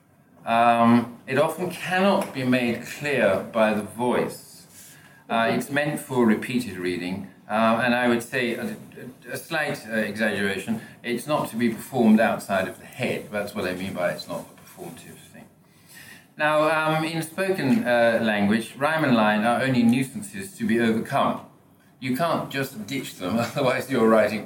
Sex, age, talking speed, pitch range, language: male, 50-69, 165 wpm, 105-140 Hz, English